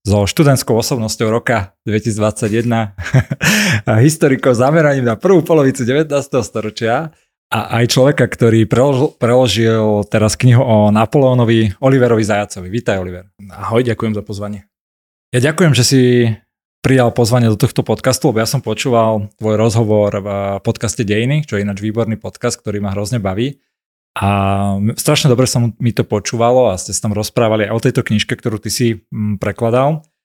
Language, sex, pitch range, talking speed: Slovak, male, 105-125 Hz, 155 wpm